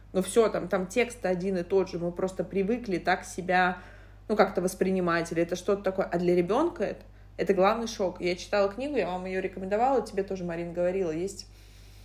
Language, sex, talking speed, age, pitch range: Russian, female, 200 wpm, 20-39, 170-205 Hz